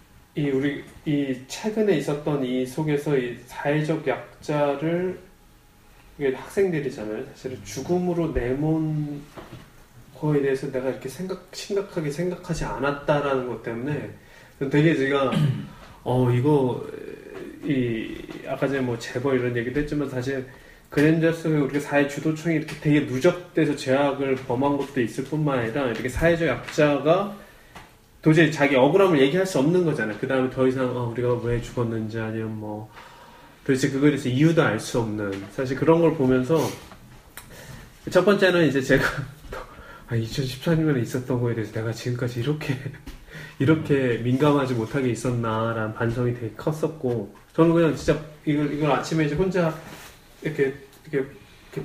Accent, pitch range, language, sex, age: native, 125-155 Hz, Korean, male, 20-39